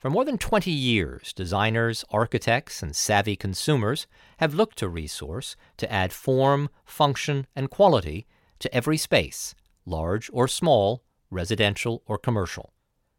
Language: English